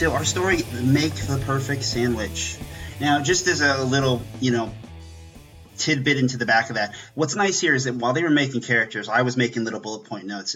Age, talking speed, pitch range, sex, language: 30-49, 210 wpm, 115-145 Hz, male, English